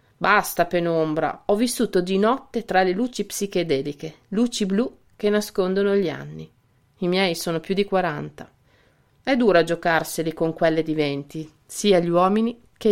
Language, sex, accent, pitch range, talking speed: Italian, female, native, 160-210 Hz, 155 wpm